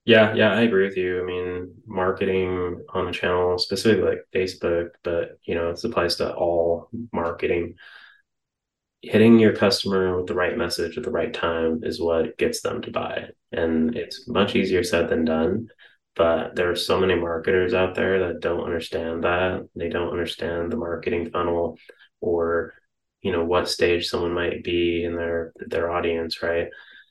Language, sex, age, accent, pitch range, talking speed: English, male, 20-39, American, 85-95 Hz, 175 wpm